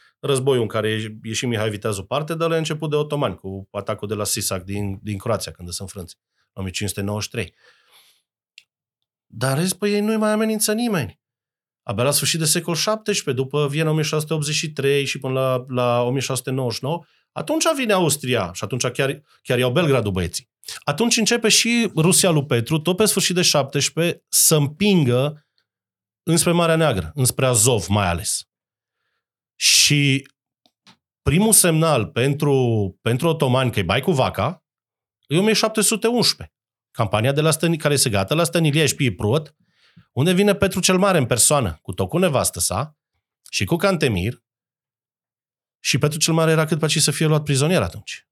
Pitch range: 110-165 Hz